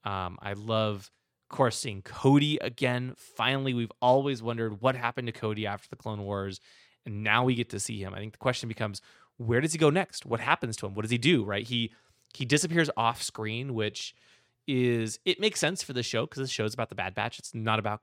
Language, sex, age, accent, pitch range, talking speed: English, male, 20-39, American, 105-130 Hz, 235 wpm